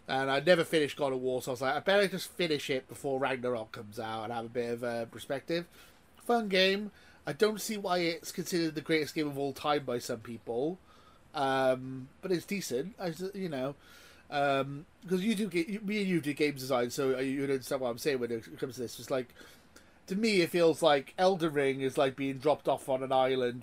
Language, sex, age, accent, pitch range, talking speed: English, male, 30-49, British, 130-170 Hz, 230 wpm